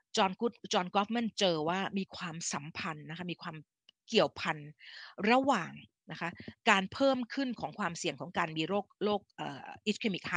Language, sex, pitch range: Thai, female, 160-215 Hz